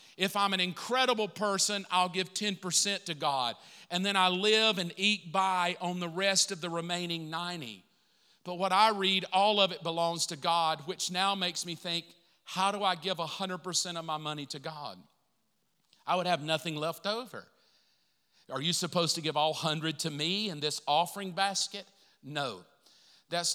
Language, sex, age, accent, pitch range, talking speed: English, male, 50-69, American, 160-195 Hz, 180 wpm